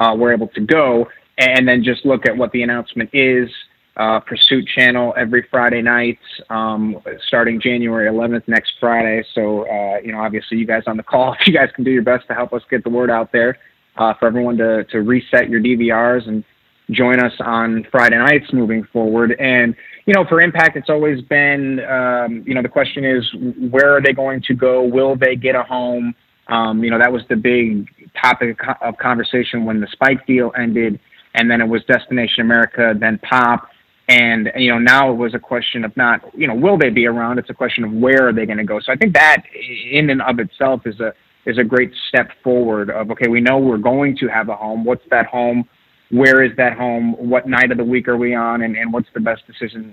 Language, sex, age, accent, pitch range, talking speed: English, male, 30-49, American, 115-125 Hz, 225 wpm